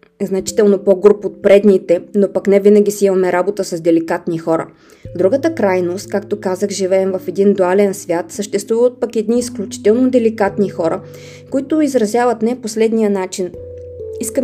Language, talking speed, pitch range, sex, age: Bulgarian, 150 wpm, 185-230 Hz, female, 20-39